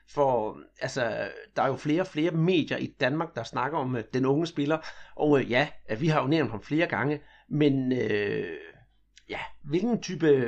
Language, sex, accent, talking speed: Danish, male, native, 195 wpm